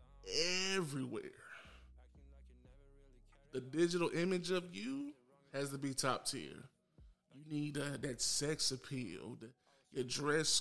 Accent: American